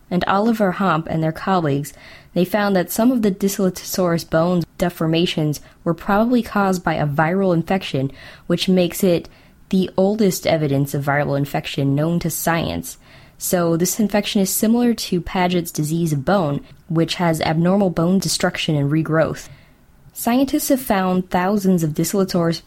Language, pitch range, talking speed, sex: English, 155-190 Hz, 150 wpm, female